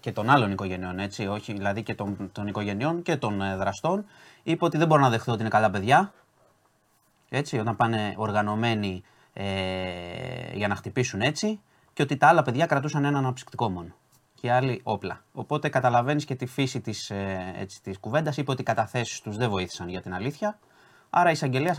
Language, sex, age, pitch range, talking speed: Greek, male, 30-49, 105-140 Hz, 185 wpm